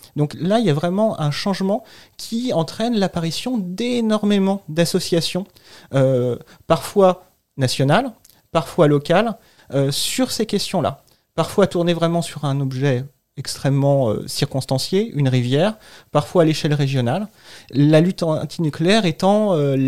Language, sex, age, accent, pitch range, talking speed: French, male, 30-49, French, 145-185 Hz, 125 wpm